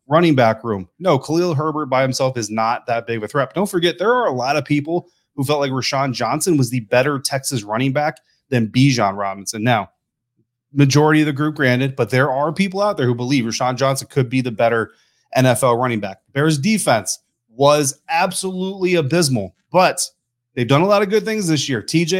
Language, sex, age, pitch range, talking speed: English, male, 30-49, 125-155 Hz, 210 wpm